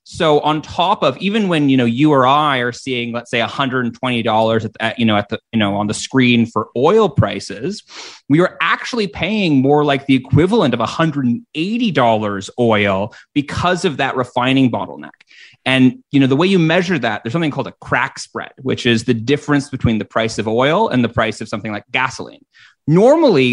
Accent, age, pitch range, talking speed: American, 30-49, 115-160 Hz, 200 wpm